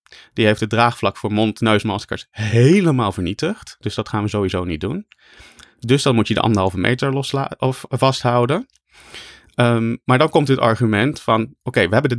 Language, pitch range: Dutch, 110-135 Hz